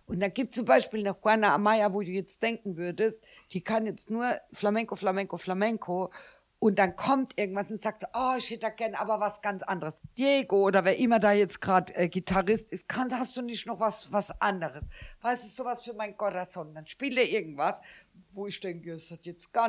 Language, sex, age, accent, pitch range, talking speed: German, female, 60-79, German, 175-220 Hz, 215 wpm